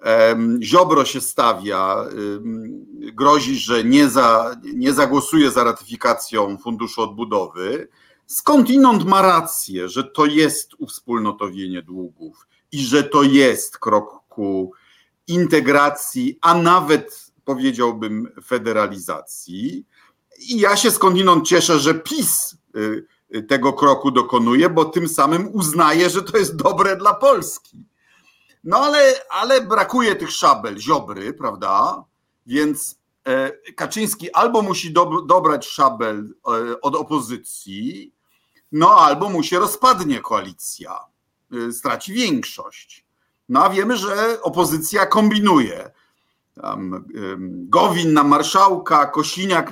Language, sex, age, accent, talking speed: Polish, male, 50-69, native, 105 wpm